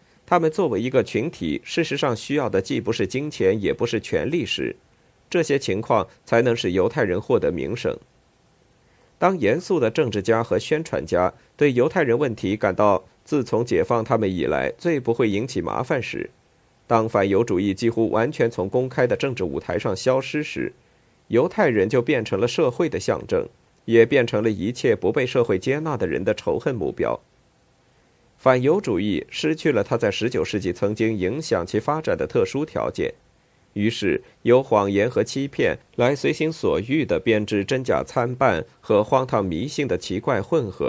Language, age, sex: Chinese, 50-69, male